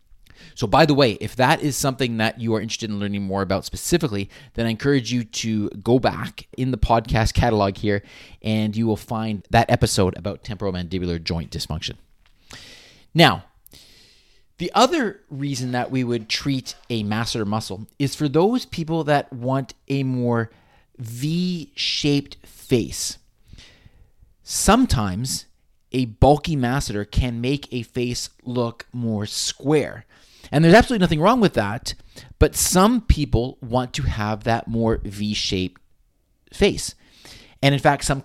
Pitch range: 105-135 Hz